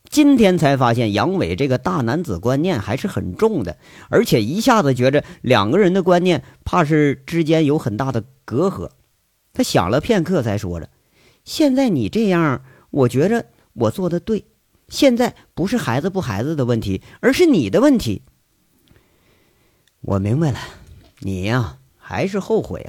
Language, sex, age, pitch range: Chinese, male, 50-69, 115-180 Hz